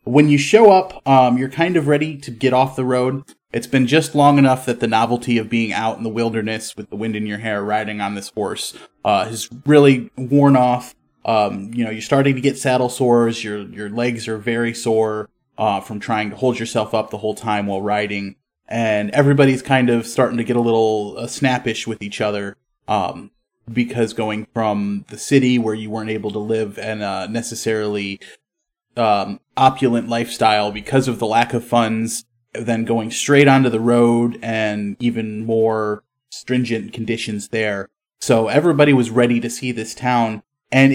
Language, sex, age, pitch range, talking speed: English, male, 20-39, 110-135 Hz, 190 wpm